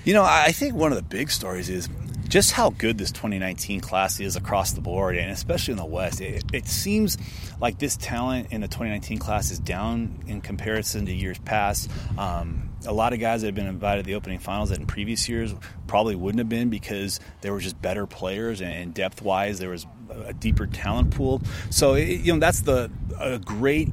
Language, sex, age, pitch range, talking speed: English, male, 30-49, 95-115 Hz, 215 wpm